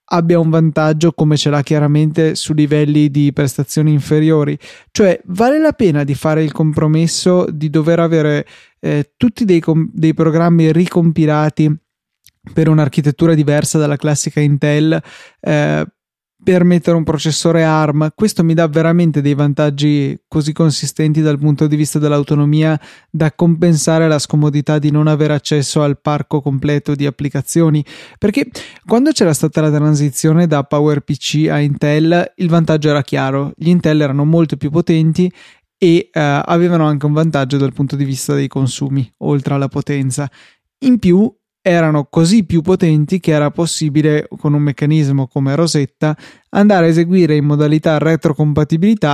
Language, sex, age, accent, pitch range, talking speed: Italian, male, 20-39, native, 145-170 Hz, 150 wpm